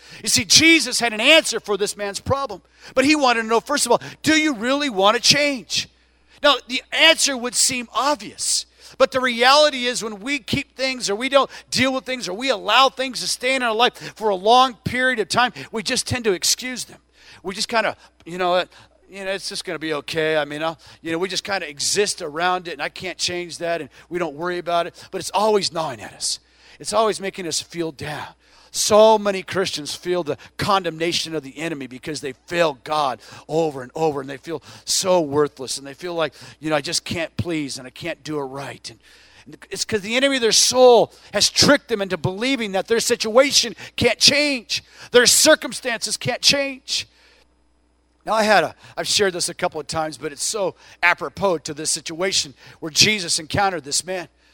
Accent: American